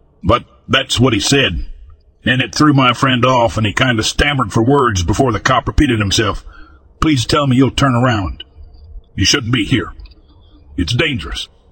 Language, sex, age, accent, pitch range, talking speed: English, male, 60-79, American, 90-135 Hz, 180 wpm